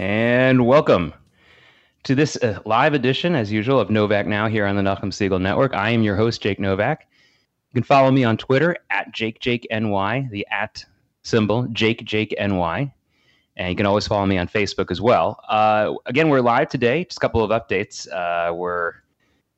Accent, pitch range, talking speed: American, 100-125 Hz, 185 wpm